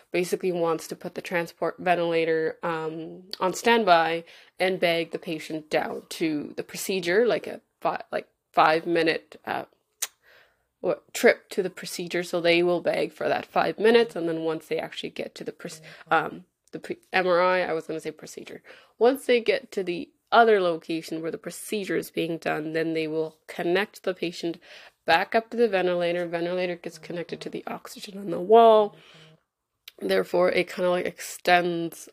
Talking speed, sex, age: 175 wpm, female, 20-39